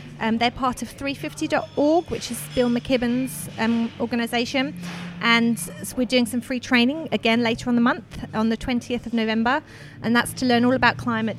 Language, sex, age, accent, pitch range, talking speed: English, female, 30-49, British, 210-260 Hz, 180 wpm